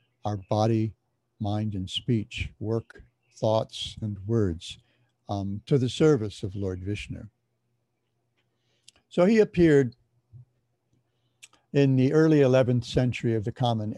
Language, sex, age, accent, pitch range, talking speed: English, male, 60-79, American, 115-130 Hz, 115 wpm